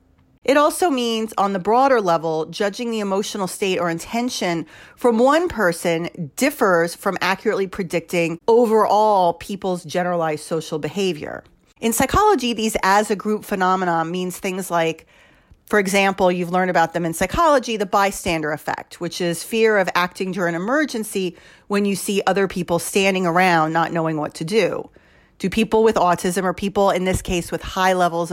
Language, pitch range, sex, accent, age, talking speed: English, 175-225 Hz, female, American, 40-59, 165 wpm